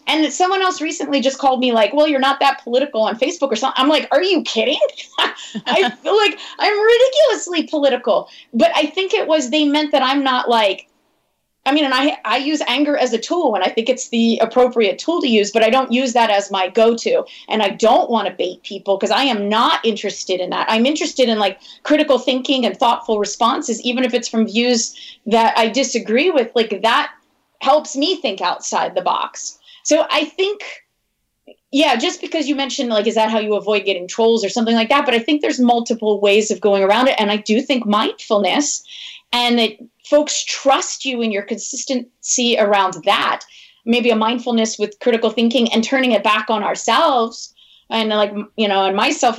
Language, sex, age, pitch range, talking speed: English, female, 30-49, 220-290 Hz, 205 wpm